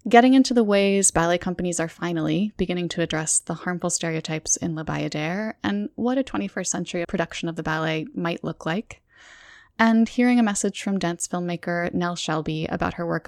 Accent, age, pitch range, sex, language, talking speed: American, 10-29, 165-215 Hz, female, English, 185 wpm